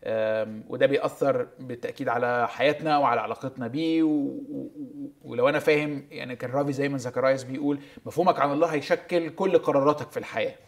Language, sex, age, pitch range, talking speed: Arabic, male, 20-39, 130-180 Hz, 145 wpm